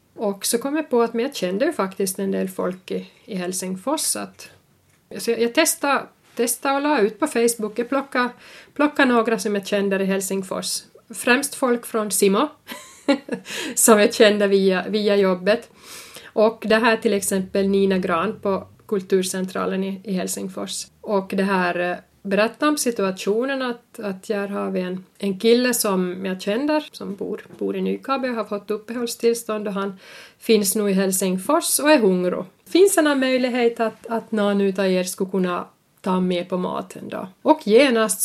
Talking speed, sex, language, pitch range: 170 wpm, female, Swedish, 195-240 Hz